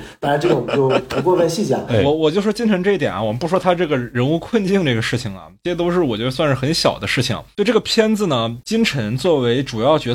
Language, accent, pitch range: Chinese, native, 135-220 Hz